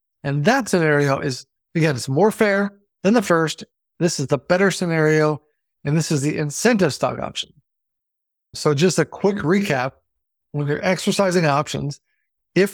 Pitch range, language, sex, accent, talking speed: 145-195 Hz, English, male, American, 155 wpm